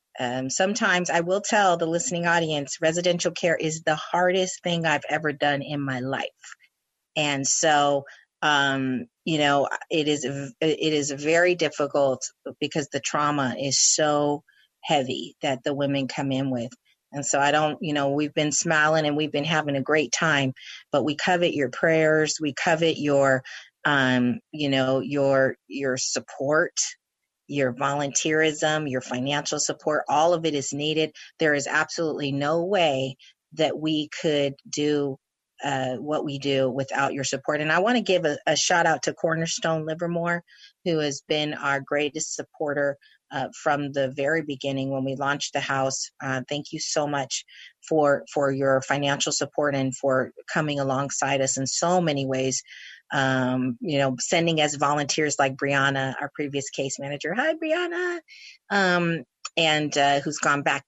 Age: 40-59